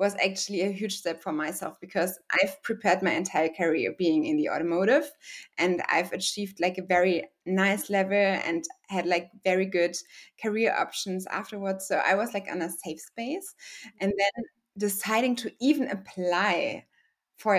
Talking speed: 165 wpm